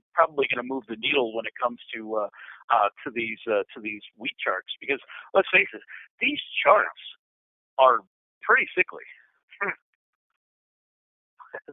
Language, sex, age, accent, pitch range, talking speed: English, male, 40-59, American, 135-190 Hz, 145 wpm